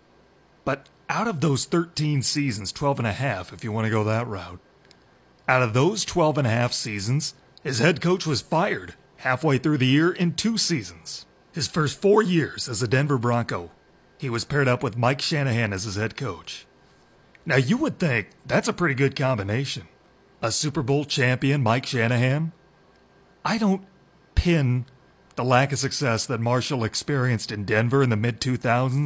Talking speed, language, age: 180 wpm, English, 30-49